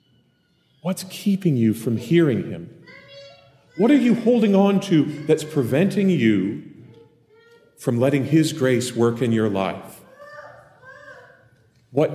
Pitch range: 130-185 Hz